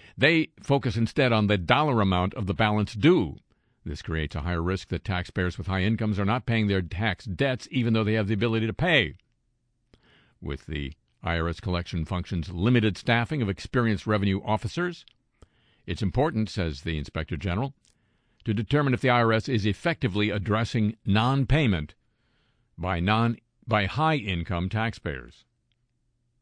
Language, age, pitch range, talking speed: English, 50-69, 90-120 Hz, 150 wpm